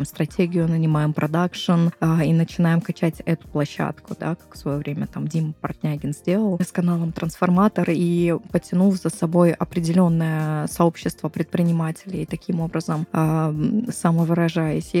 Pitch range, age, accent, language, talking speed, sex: 165-185 Hz, 20-39, native, Russian, 125 wpm, female